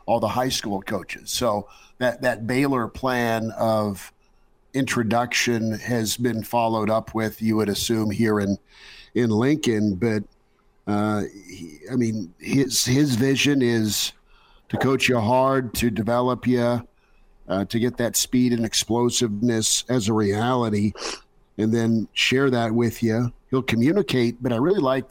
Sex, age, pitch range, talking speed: male, 50-69, 110-125 Hz, 145 wpm